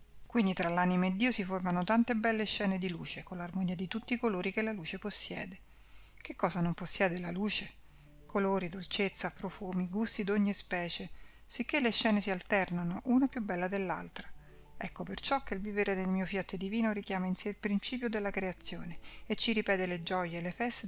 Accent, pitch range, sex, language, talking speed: native, 185-210 Hz, female, Italian, 195 wpm